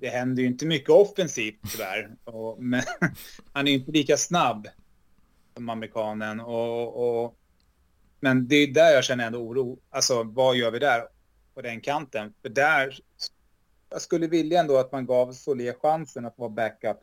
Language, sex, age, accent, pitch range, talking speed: Swedish, male, 30-49, native, 110-145 Hz, 175 wpm